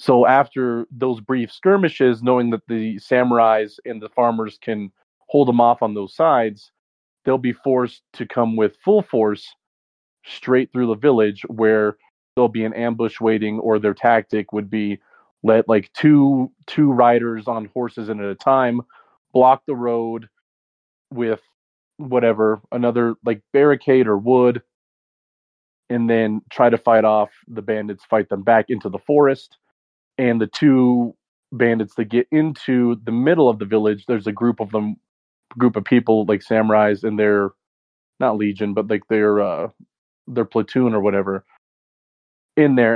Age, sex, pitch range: 30-49, male, 105-125 Hz